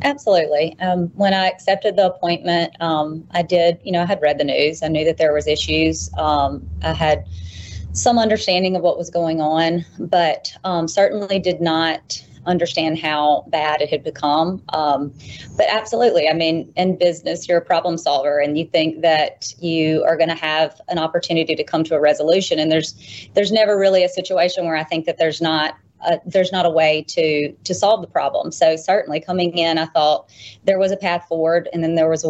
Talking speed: 205 wpm